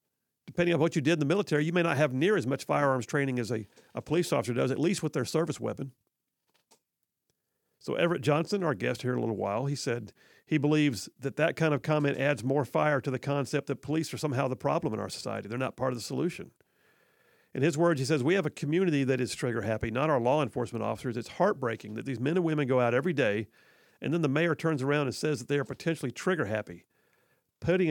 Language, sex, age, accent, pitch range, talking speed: English, male, 50-69, American, 125-160 Hz, 245 wpm